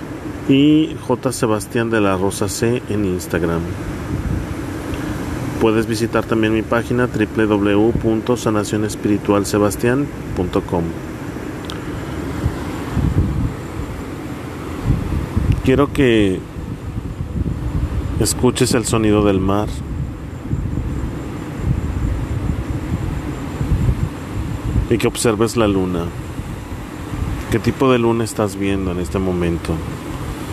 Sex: male